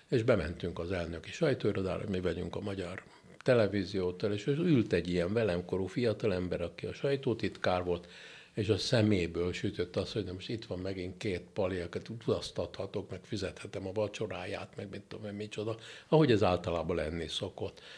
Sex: male